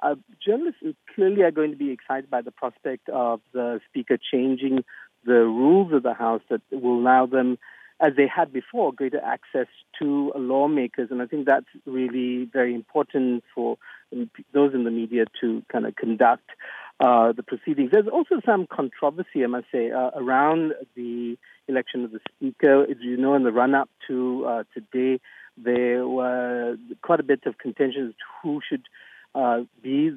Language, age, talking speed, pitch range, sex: English, 50-69, 175 wpm, 125-150 Hz, male